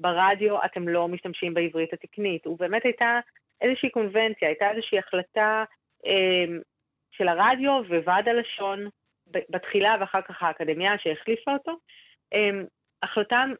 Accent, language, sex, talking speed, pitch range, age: native, Hebrew, female, 120 wpm, 180-235 Hz, 30-49